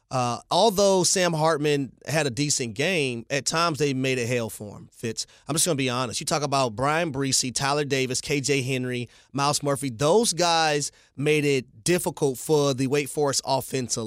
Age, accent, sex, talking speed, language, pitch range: 30-49, American, male, 190 wpm, English, 125-155 Hz